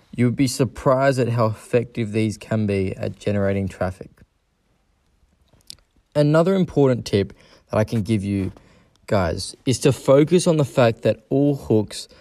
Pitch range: 100-130 Hz